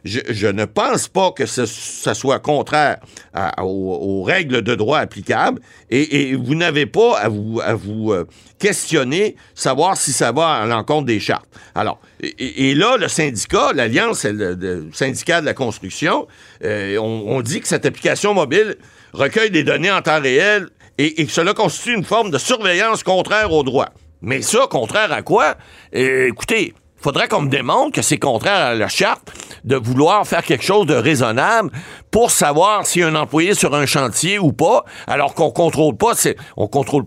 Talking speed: 185 wpm